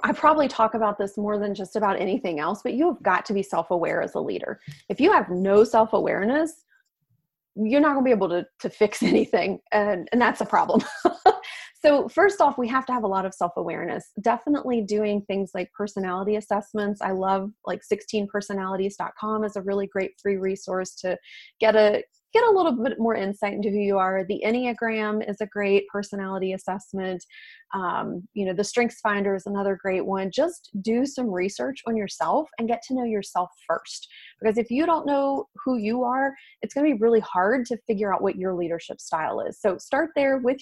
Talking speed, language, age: 200 wpm, English, 30-49